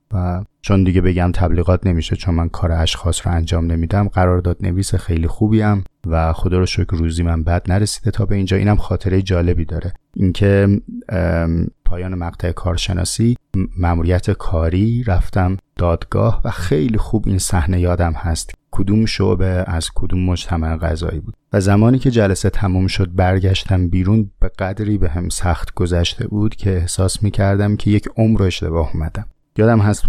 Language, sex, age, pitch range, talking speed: Persian, male, 30-49, 85-100 Hz, 160 wpm